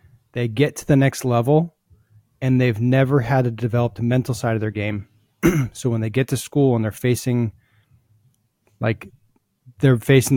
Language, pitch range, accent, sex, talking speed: English, 115-135 Hz, American, male, 170 wpm